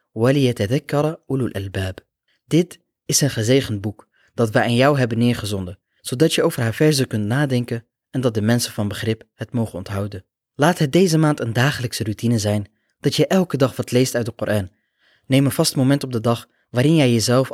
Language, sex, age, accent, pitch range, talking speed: Dutch, male, 20-39, Dutch, 110-140 Hz, 190 wpm